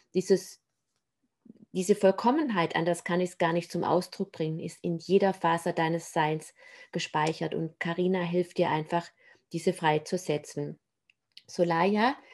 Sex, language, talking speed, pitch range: female, German, 140 wpm, 170-190 Hz